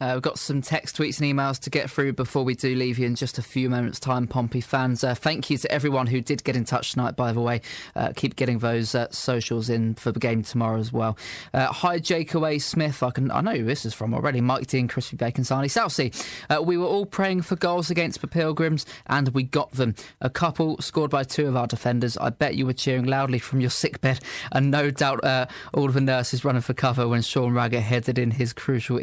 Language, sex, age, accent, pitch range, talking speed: English, male, 20-39, British, 120-140 Hz, 250 wpm